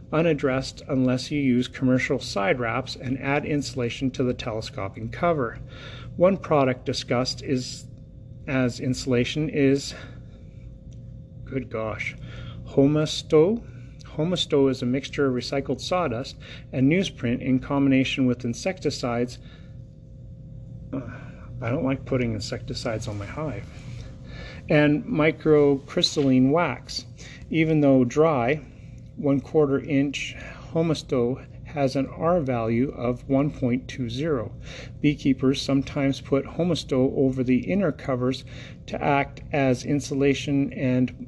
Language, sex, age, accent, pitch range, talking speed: English, male, 40-59, American, 125-140 Hz, 110 wpm